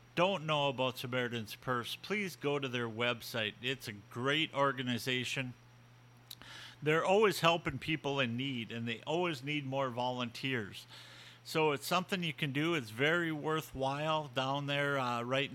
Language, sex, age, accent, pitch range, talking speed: English, male, 50-69, American, 120-140 Hz, 150 wpm